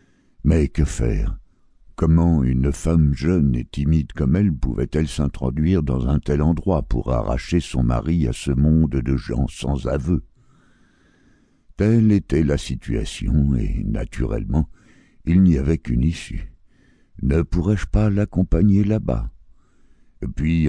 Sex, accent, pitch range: male, French, 65-90 Hz